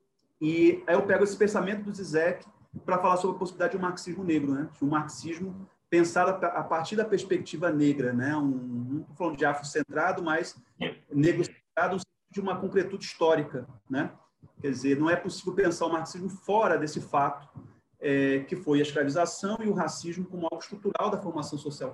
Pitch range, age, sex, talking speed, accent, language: 145-185 Hz, 40-59, male, 185 wpm, Brazilian, Portuguese